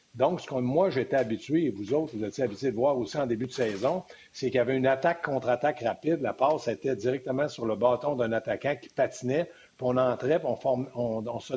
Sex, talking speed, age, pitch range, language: male, 250 wpm, 60-79, 120-155 Hz, French